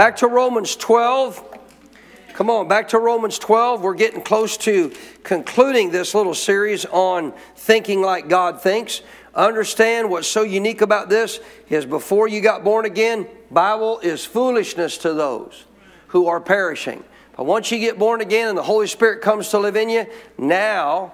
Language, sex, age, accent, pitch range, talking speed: English, male, 50-69, American, 180-225 Hz, 165 wpm